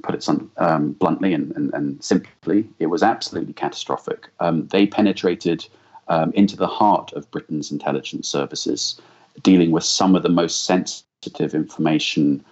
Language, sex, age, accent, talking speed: English, male, 40-59, British, 150 wpm